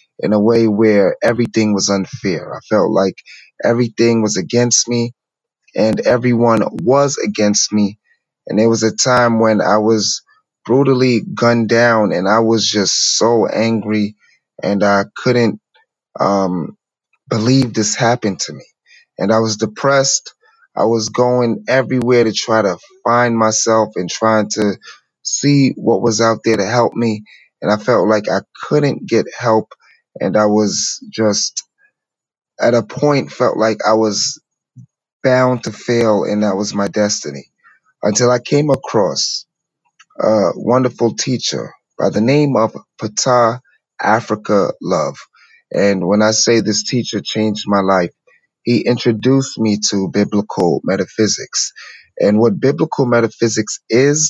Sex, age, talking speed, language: male, 30-49, 145 wpm, English